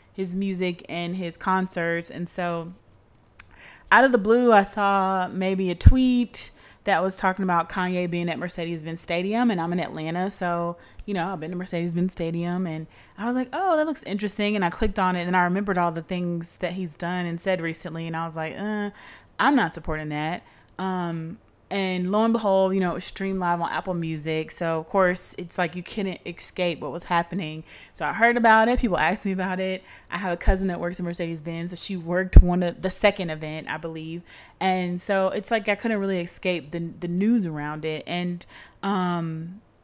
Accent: American